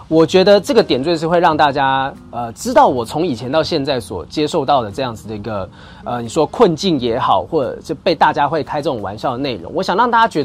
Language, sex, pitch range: Chinese, male, 125-175 Hz